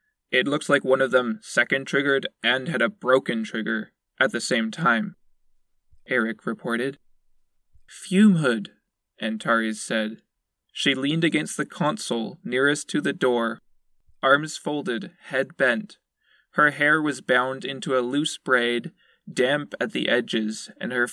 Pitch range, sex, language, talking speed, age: 115-155 Hz, male, English, 140 wpm, 20-39